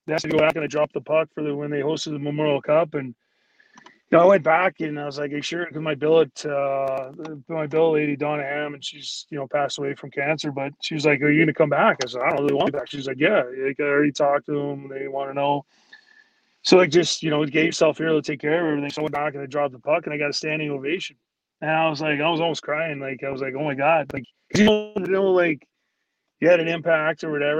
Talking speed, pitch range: 285 wpm, 145-165 Hz